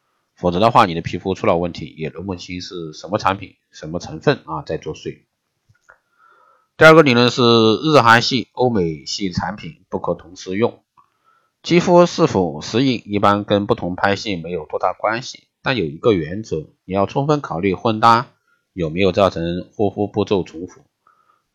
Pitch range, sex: 95-140 Hz, male